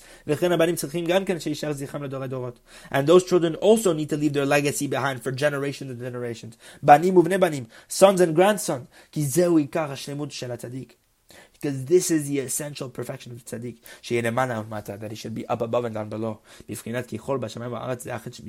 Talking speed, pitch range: 110 wpm, 115-140 Hz